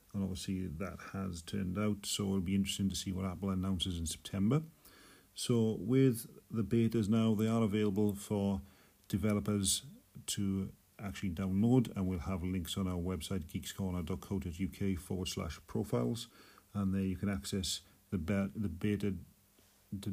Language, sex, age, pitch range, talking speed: English, male, 40-59, 95-105 Hz, 150 wpm